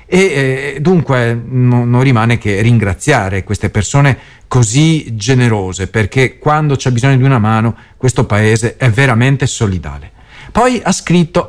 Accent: native